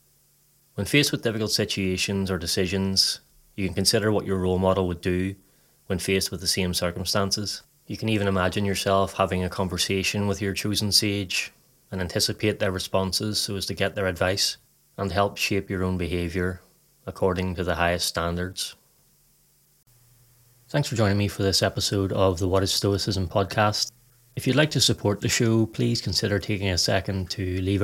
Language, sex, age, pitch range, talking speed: English, male, 30-49, 95-110 Hz, 175 wpm